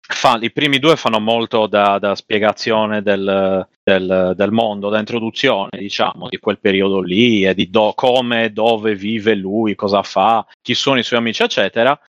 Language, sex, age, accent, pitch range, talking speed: Italian, male, 30-49, native, 100-125 Hz, 170 wpm